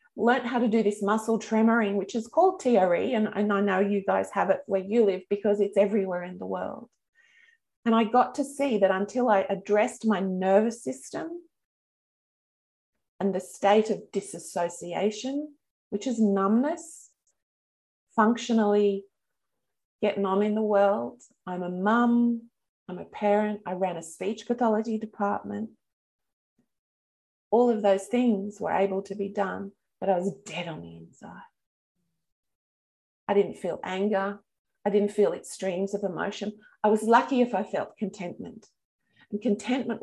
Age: 30-49